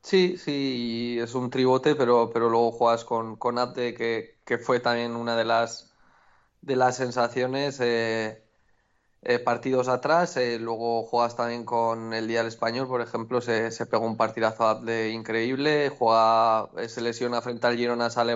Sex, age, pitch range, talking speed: male, 20-39, 115-125 Hz, 170 wpm